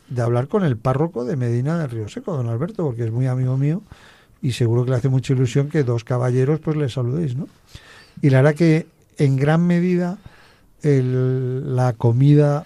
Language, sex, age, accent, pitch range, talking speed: Spanish, male, 50-69, Spanish, 125-145 Hz, 195 wpm